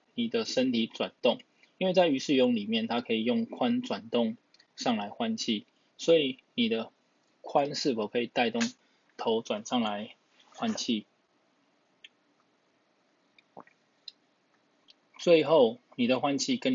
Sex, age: male, 20-39